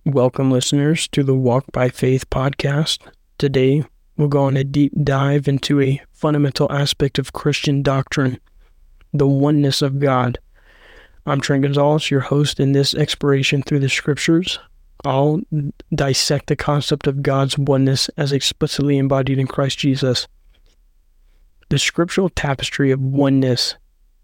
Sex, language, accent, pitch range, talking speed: male, English, American, 130-150 Hz, 135 wpm